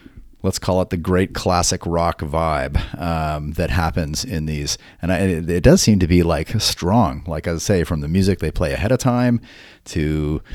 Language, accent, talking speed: English, American, 195 wpm